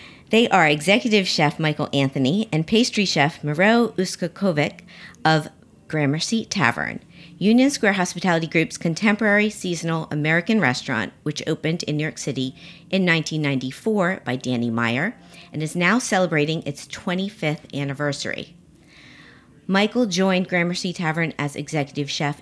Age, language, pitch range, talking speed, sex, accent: 40-59, English, 150-190 Hz, 125 wpm, female, American